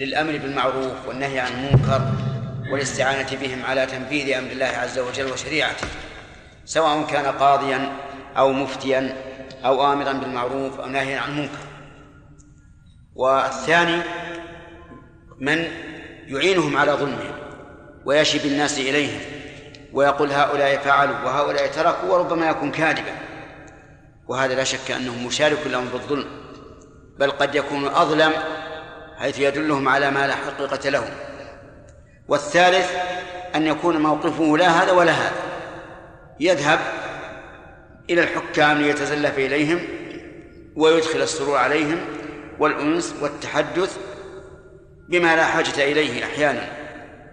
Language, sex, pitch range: Arabic, male, 135-155 Hz